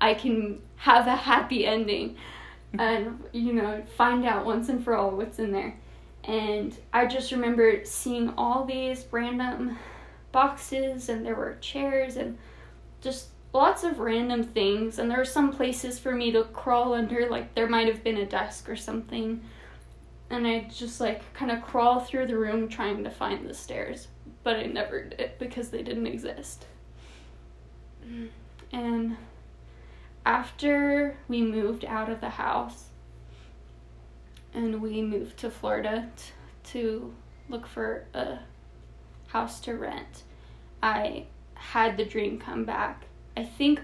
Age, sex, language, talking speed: 10-29, female, English, 145 wpm